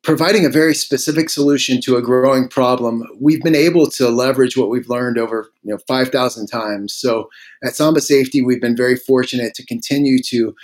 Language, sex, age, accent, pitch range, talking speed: English, male, 30-49, American, 120-145 Hz, 185 wpm